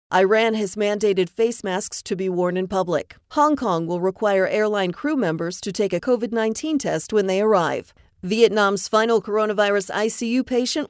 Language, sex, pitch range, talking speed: English, female, 185-235 Hz, 165 wpm